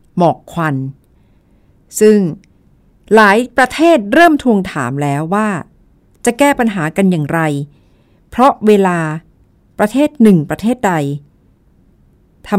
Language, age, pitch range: Thai, 60-79, 155-215 Hz